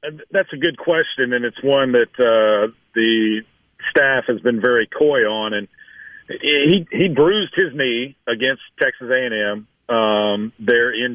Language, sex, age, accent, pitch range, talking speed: English, male, 50-69, American, 115-130 Hz, 160 wpm